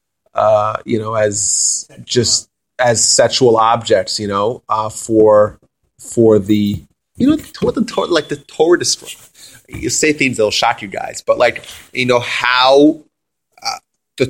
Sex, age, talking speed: male, 30-49, 155 wpm